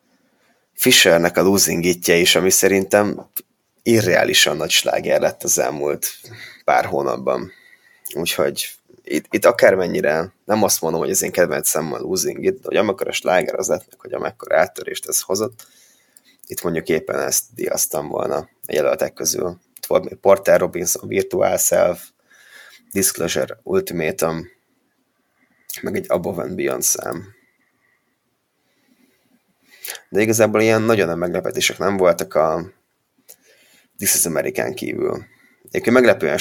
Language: Hungarian